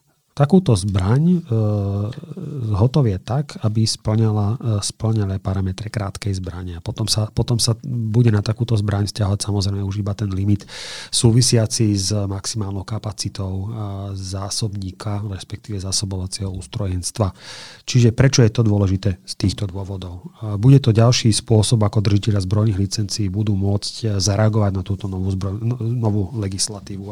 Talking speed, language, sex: 125 wpm, Slovak, male